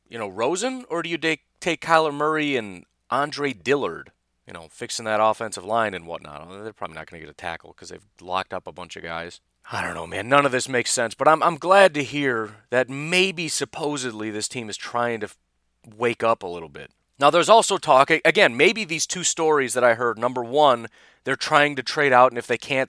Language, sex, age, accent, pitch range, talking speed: English, male, 30-49, American, 110-160 Hz, 230 wpm